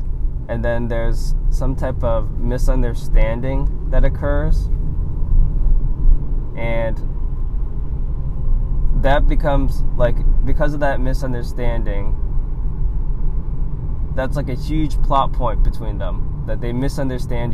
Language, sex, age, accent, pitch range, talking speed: English, male, 20-39, American, 95-140 Hz, 95 wpm